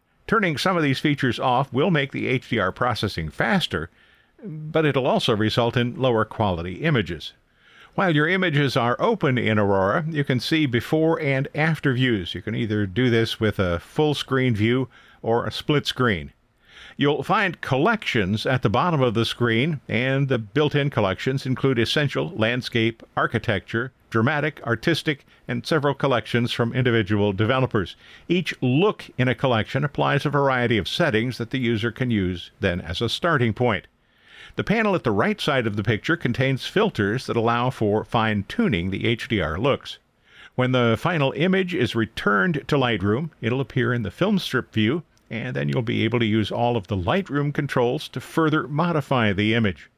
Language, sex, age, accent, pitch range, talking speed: English, male, 50-69, American, 110-145 Hz, 170 wpm